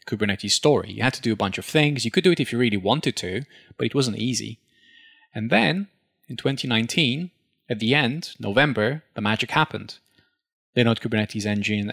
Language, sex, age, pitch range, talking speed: English, male, 20-39, 105-140 Hz, 185 wpm